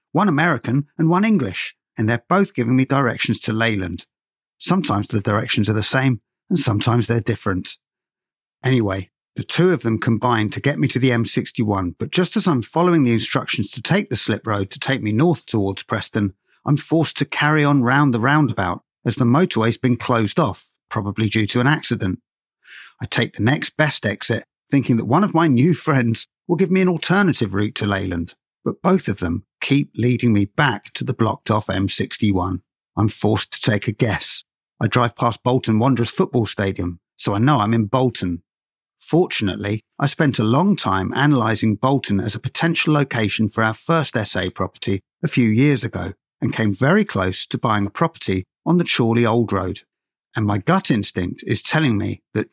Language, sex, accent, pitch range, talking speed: English, male, British, 105-145 Hz, 190 wpm